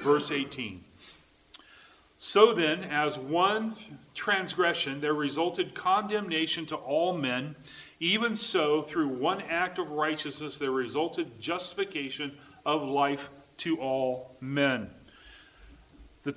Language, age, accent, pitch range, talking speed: English, 40-59, American, 140-180 Hz, 105 wpm